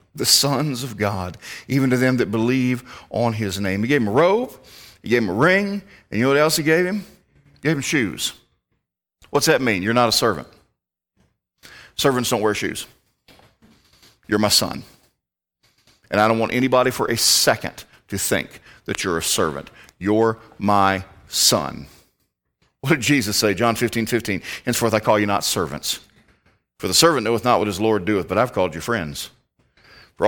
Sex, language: male, English